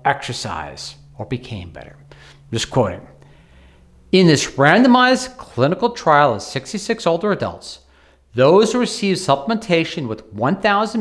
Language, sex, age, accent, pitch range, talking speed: English, male, 40-59, American, 115-170 Hz, 115 wpm